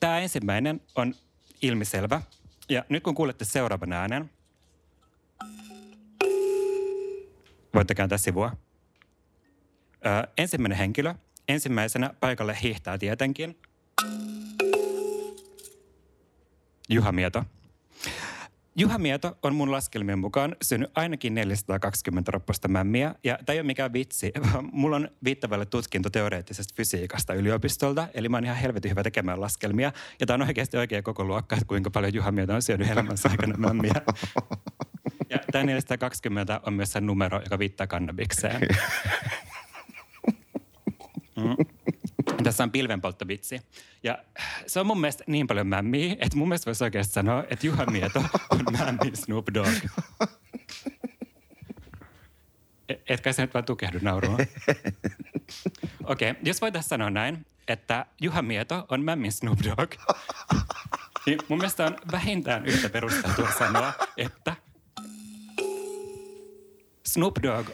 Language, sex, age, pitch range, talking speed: Finnish, male, 30-49, 100-155 Hz, 110 wpm